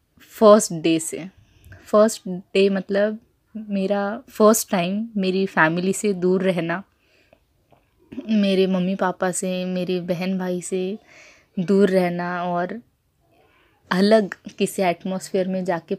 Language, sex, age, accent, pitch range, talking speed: Hindi, female, 20-39, native, 180-205 Hz, 115 wpm